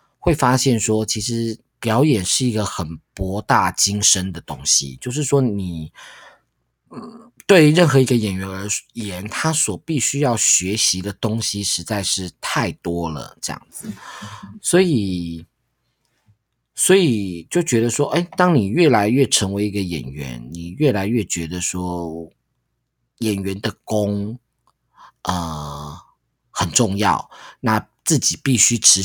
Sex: male